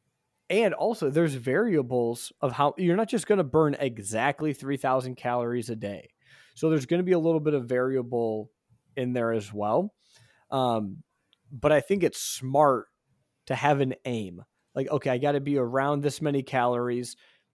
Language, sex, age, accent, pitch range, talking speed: English, male, 30-49, American, 125-155 Hz, 175 wpm